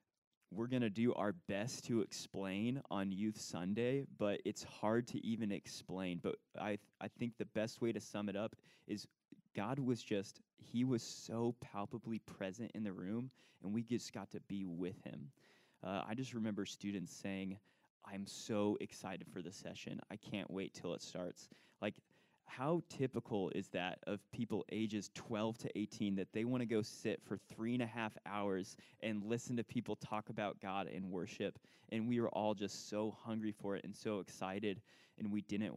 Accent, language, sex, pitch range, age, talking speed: American, English, male, 100-120 Hz, 20-39, 190 wpm